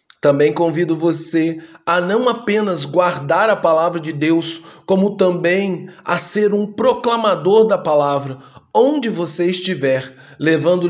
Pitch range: 145-195 Hz